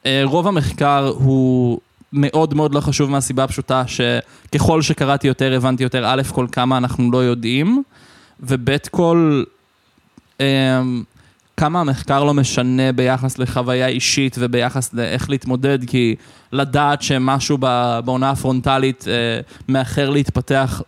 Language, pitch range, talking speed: Hebrew, 125-140 Hz, 110 wpm